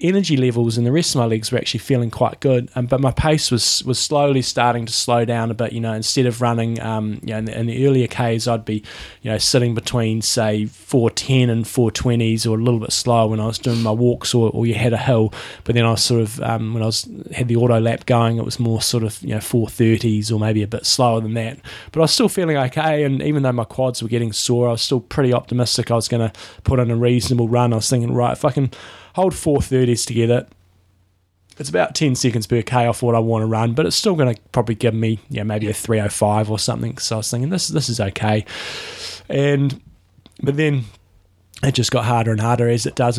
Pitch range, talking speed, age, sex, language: 110-130 Hz, 260 wpm, 20-39, male, English